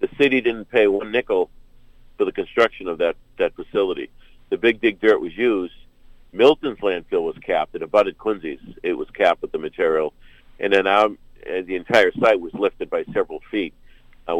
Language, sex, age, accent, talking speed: English, male, 50-69, American, 190 wpm